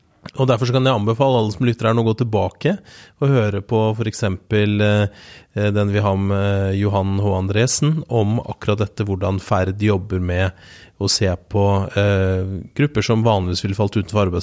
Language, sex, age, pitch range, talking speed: English, male, 30-49, 100-115 Hz, 175 wpm